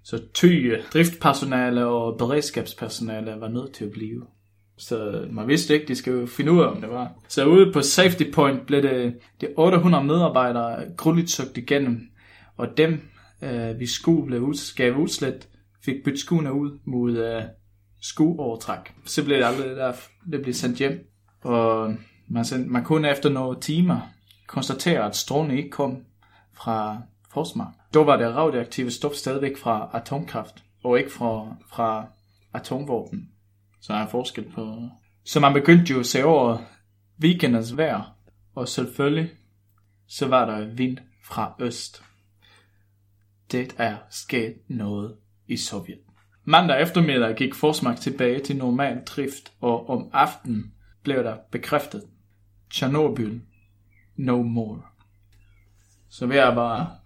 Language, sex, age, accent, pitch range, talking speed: Danish, male, 20-39, native, 105-140 Hz, 140 wpm